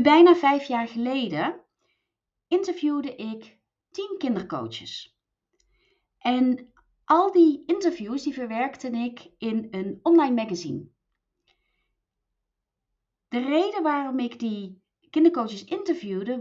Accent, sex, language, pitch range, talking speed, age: Dutch, female, Dutch, 205-310 Hz, 95 wpm, 30-49